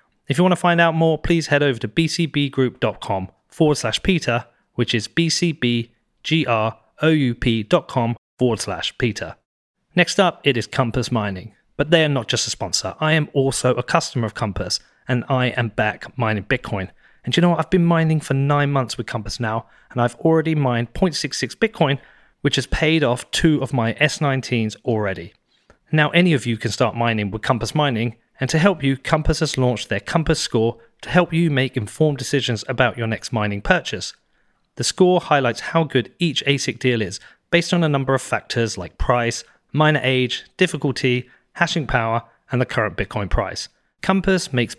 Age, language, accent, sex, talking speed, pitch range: 30-49, English, British, male, 180 wpm, 115-155 Hz